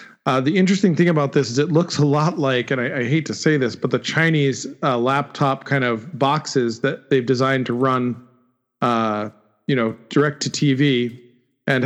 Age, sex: 40-59, male